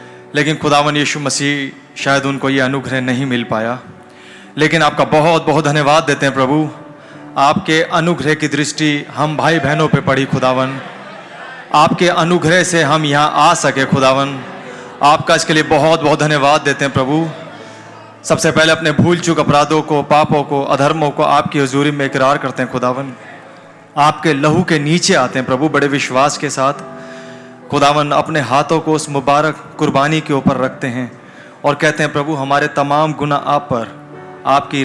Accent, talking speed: Indian, 160 wpm